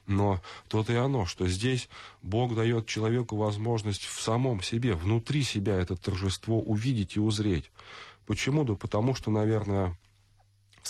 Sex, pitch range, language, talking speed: male, 95-120 Hz, Russian, 140 wpm